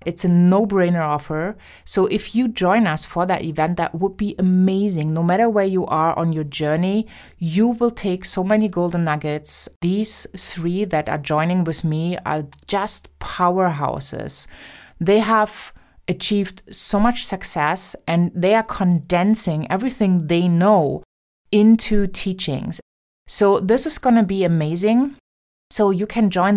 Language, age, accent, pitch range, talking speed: English, 30-49, German, 170-210 Hz, 150 wpm